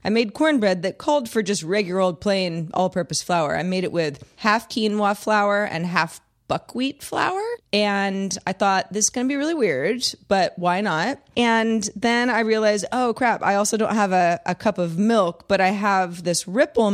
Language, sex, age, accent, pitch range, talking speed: English, female, 30-49, American, 175-235 Hz, 195 wpm